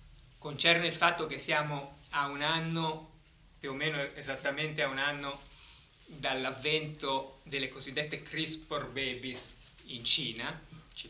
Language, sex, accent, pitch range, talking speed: Italian, male, native, 120-150 Hz, 125 wpm